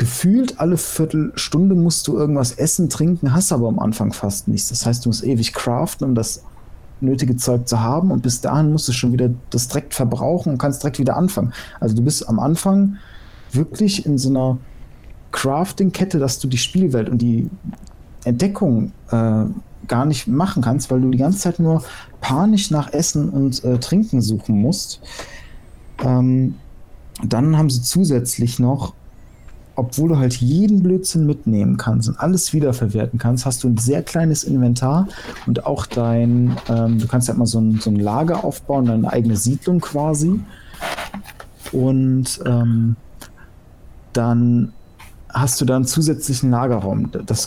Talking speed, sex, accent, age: 165 wpm, male, German, 40-59